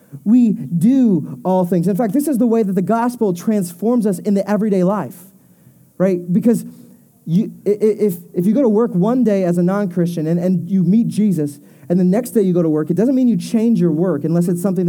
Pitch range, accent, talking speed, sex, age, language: 185-235 Hz, American, 225 wpm, male, 30-49, English